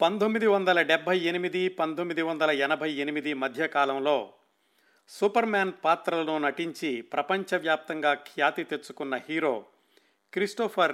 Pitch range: 145-195 Hz